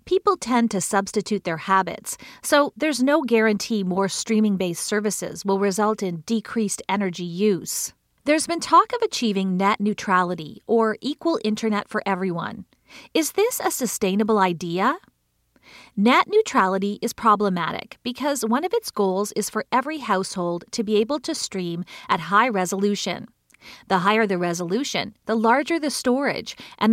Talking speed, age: 145 wpm, 40-59